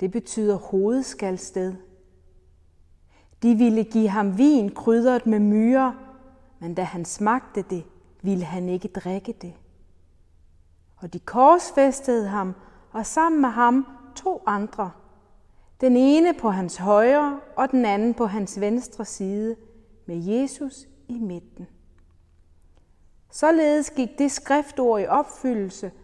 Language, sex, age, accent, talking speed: Danish, female, 30-49, native, 120 wpm